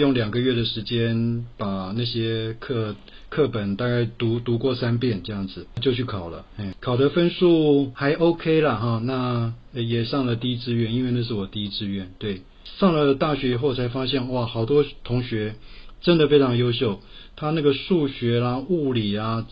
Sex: male